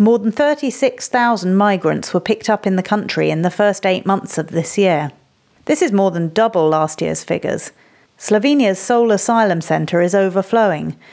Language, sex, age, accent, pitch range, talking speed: English, female, 40-59, British, 170-215 Hz, 175 wpm